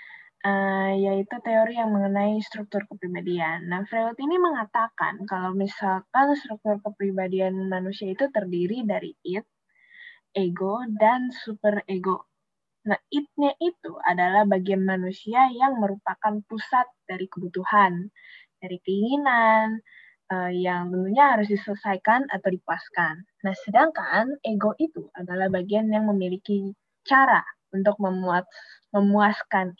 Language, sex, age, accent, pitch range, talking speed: Indonesian, female, 10-29, native, 190-225 Hz, 110 wpm